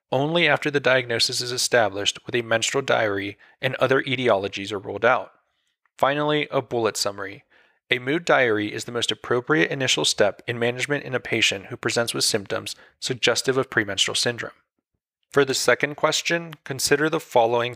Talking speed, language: 165 wpm, English